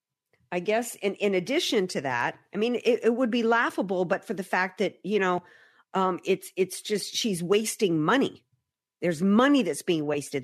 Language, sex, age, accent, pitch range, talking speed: English, female, 50-69, American, 155-210 Hz, 190 wpm